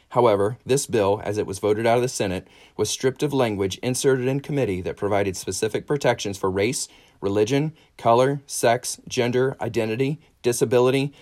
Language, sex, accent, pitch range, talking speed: English, male, American, 100-125 Hz, 160 wpm